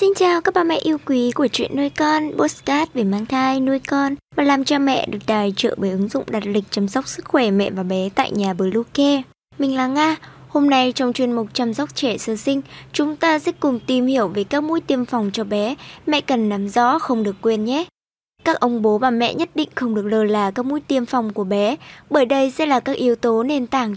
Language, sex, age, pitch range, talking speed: Vietnamese, male, 20-39, 225-290 Hz, 250 wpm